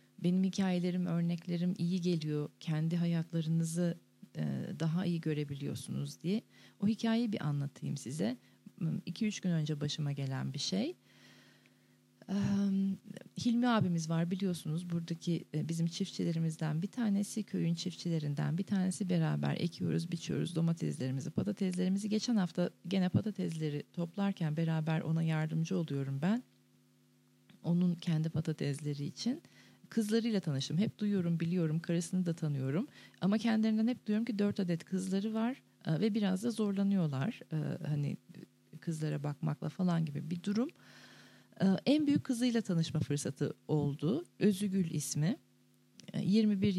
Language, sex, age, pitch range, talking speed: Turkish, female, 40-59, 160-200 Hz, 120 wpm